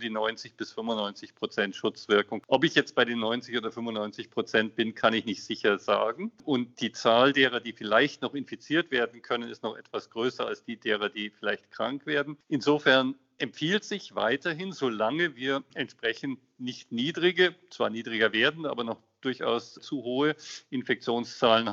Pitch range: 115-150 Hz